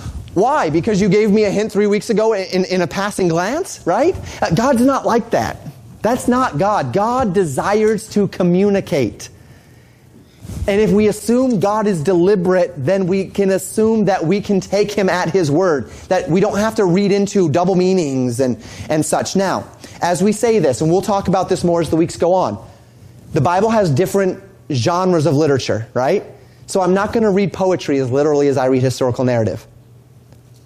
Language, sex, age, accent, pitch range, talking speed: English, male, 30-49, American, 140-200 Hz, 190 wpm